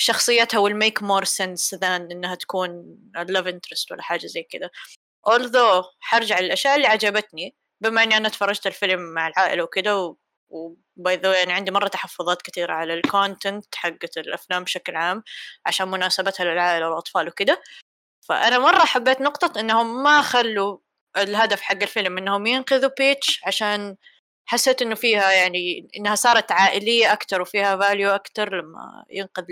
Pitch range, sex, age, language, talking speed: 180-225 Hz, female, 20-39, Arabic, 145 wpm